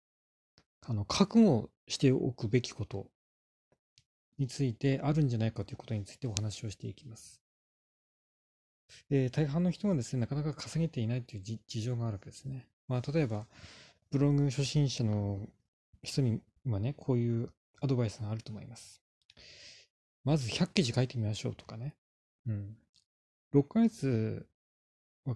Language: Japanese